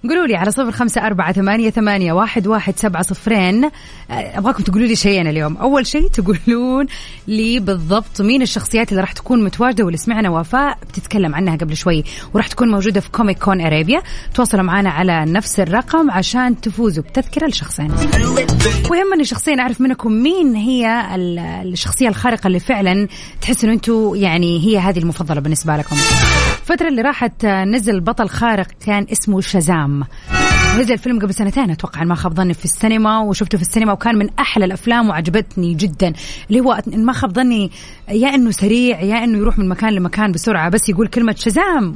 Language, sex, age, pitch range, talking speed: Arabic, female, 30-49, 185-235 Hz, 165 wpm